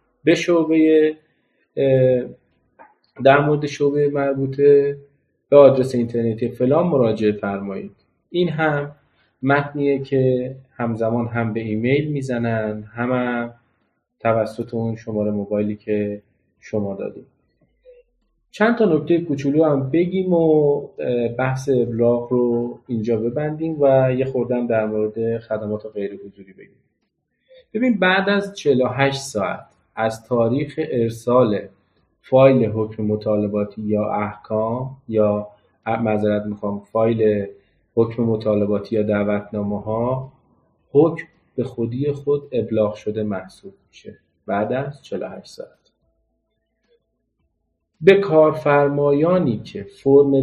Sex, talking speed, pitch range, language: male, 105 wpm, 105-140 Hz, Persian